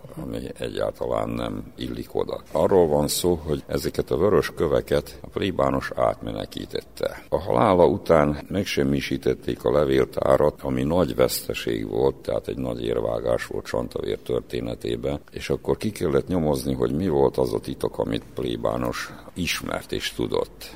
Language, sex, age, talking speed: Hungarian, male, 60-79, 140 wpm